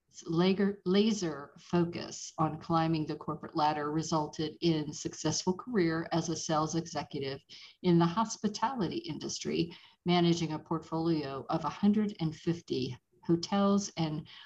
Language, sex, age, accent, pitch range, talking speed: English, female, 50-69, American, 160-195 Hz, 110 wpm